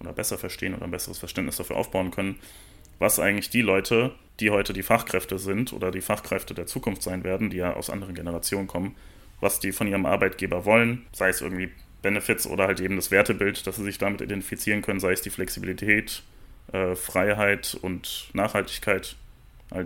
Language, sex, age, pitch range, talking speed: German, male, 30-49, 95-110 Hz, 185 wpm